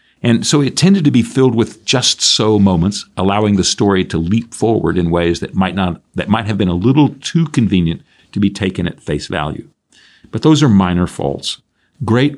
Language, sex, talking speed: English, male, 205 wpm